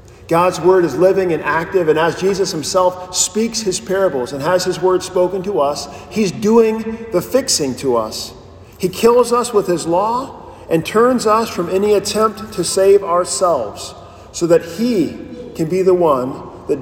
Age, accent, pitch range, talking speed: 40-59, American, 150-195 Hz, 175 wpm